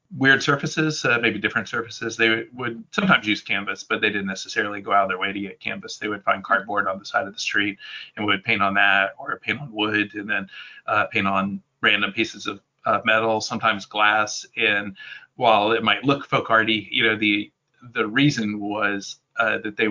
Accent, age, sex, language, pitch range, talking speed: American, 30-49, male, English, 105-135 Hz, 210 wpm